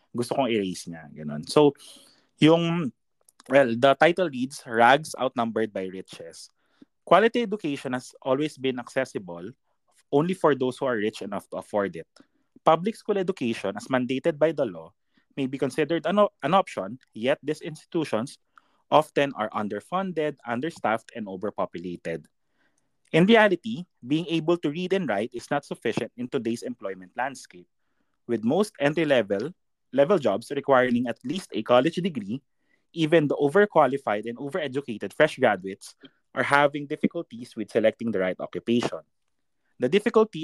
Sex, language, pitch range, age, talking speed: male, Filipino, 115-165 Hz, 20-39, 140 wpm